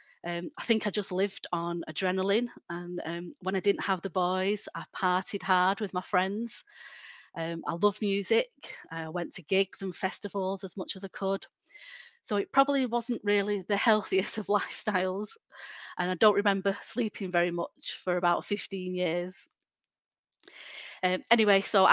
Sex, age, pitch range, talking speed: female, 30-49, 180-210 Hz, 165 wpm